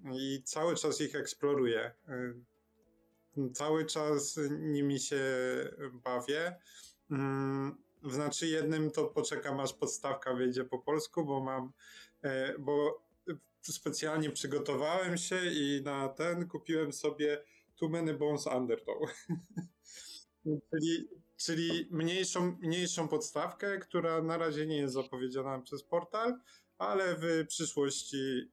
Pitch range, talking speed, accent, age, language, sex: 130-160 Hz, 105 wpm, native, 20-39, Polish, male